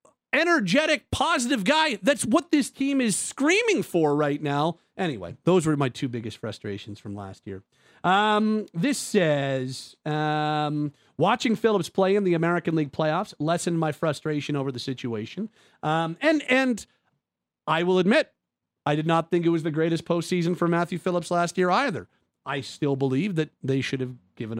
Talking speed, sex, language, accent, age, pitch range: 170 wpm, male, English, American, 40-59, 145-185 Hz